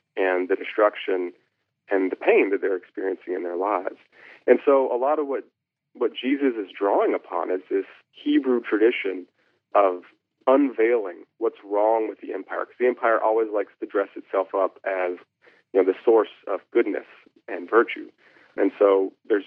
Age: 40-59